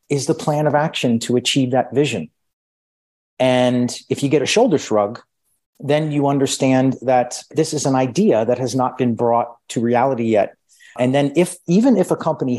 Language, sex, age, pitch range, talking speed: English, male, 40-59, 120-150 Hz, 185 wpm